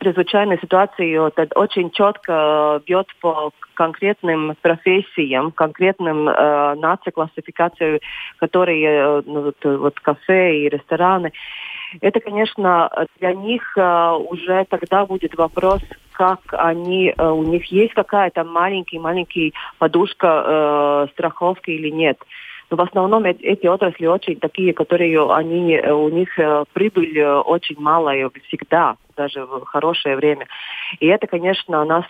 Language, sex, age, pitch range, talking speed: Russian, female, 30-49, 150-180 Hz, 120 wpm